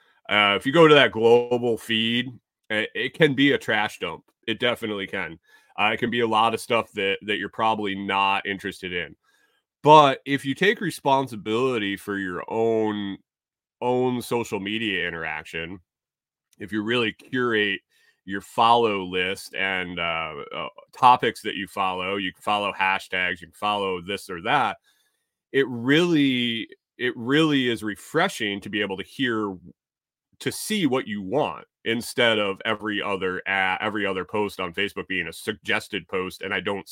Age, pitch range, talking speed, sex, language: 30-49, 95-125 Hz, 165 wpm, male, English